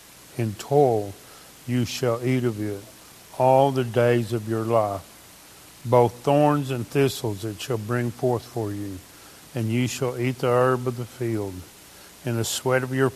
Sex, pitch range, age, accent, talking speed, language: male, 105-125 Hz, 50-69, American, 170 wpm, English